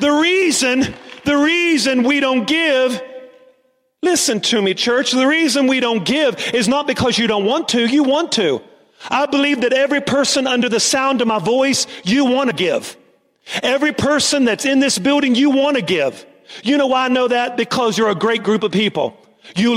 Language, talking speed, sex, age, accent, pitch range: English, 195 wpm, male, 40-59, American, 225-270 Hz